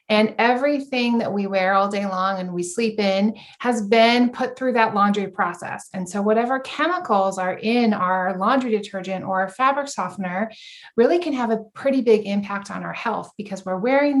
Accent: American